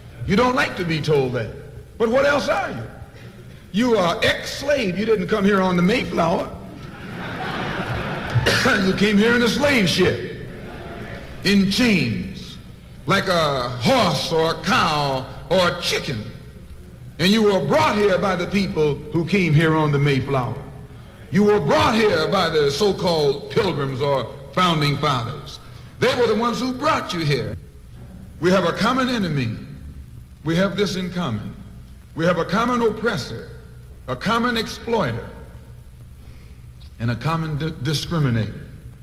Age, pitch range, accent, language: 60-79, 135-210 Hz, American, English